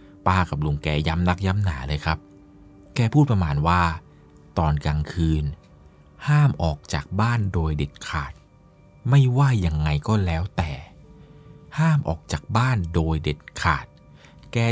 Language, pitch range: Thai, 75-100 Hz